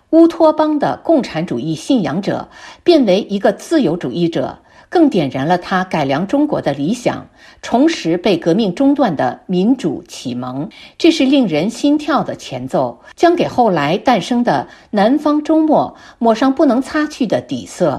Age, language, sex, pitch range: 50-69, Chinese, female, 185-300 Hz